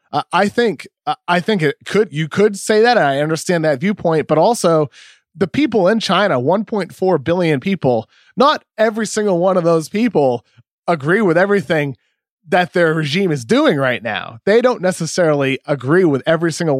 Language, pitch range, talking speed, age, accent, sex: English, 140-195 Hz, 170 wpm, 30-49, American, male